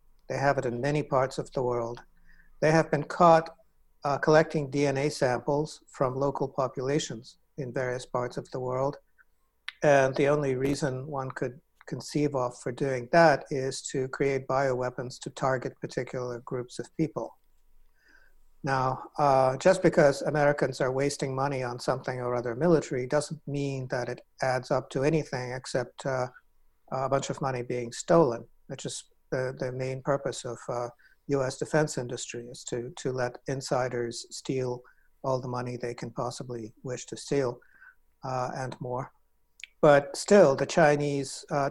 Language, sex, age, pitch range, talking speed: English, male, 60-79, 125-150 Hz, 160 wpm